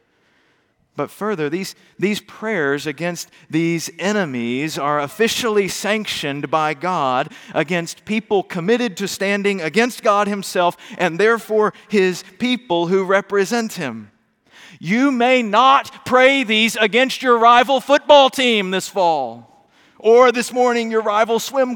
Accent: American